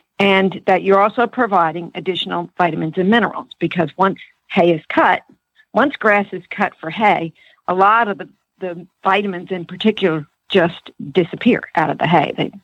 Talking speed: 165 wpm